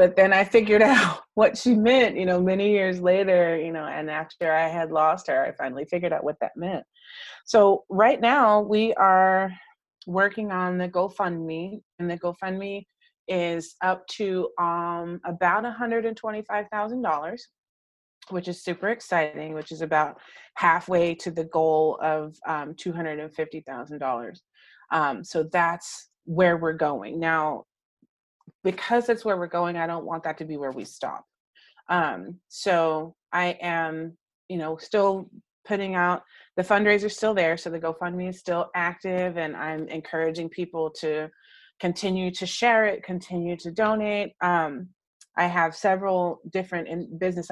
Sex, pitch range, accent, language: female, 160-190 Hz, American, English